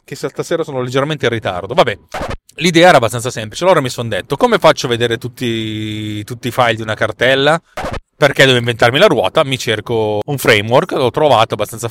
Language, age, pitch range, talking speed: Italian, 30-49, 110-155 Hz, 190 wpm